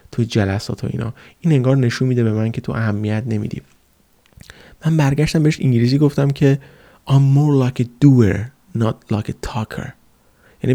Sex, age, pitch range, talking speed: male, 30-49, 110-130 Hz, 165 wpm